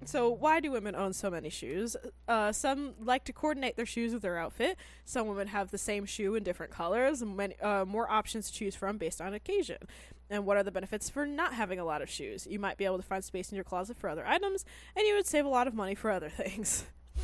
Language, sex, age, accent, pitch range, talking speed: English, female, 20-39, American, 195-290 Hz, 260 wpm